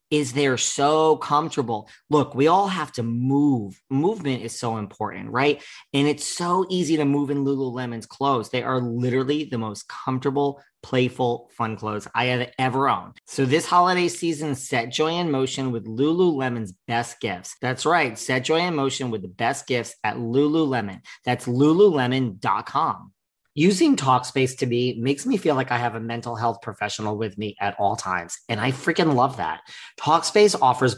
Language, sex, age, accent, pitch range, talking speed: English, male, 40-59, American, 115-145 Hz, 170 wpm